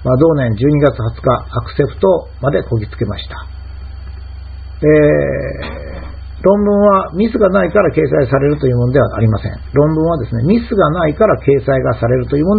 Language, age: Japanese, 50-69